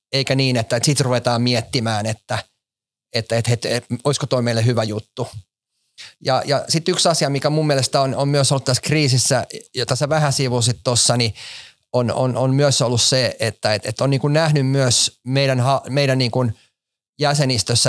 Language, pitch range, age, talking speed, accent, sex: Finnish, 120-140 Hz, 30-49, 195 wpm, native, male